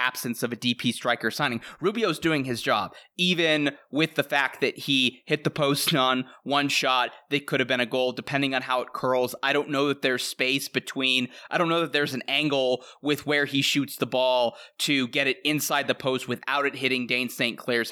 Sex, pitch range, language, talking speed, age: male, 120-140 Hz, English, 220 wpm, 20-39